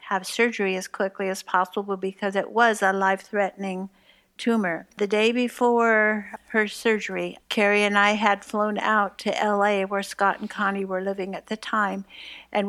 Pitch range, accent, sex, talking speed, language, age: 195-220 Hz, American, female, 170 wpm, English, 60-79